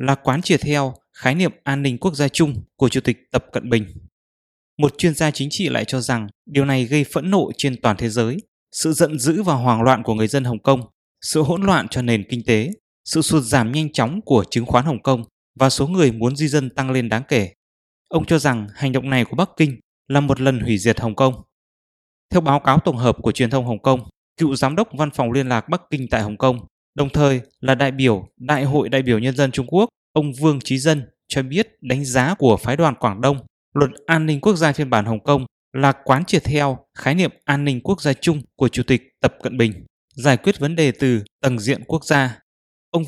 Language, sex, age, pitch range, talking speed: English, male, 20-39, 120-150 Hz, 240 wpm